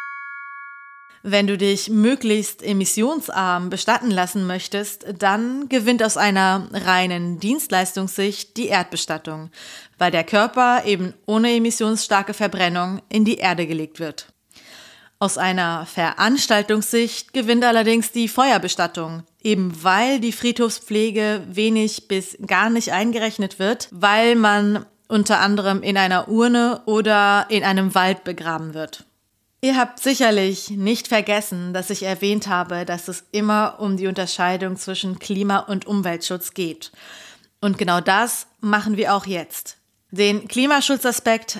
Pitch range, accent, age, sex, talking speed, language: 185-230 Hz, German, 30-49, female, 125 wpm, German